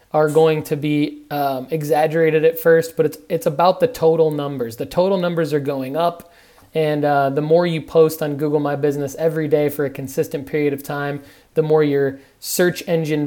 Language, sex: English, male